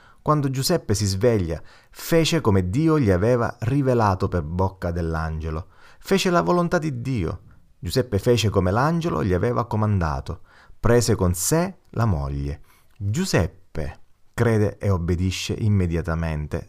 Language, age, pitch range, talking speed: Italian, 30-49, 85-115 Hz, 125 wpm